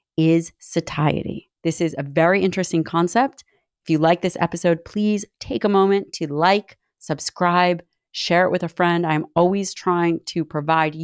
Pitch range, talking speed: 160-195 Hz, 165 wpm